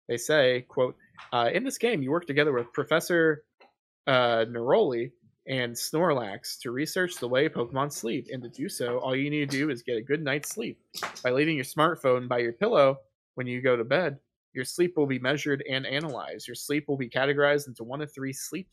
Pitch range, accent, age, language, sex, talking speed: 120-145 Hz, American, 20-39, English, male, 210 wpm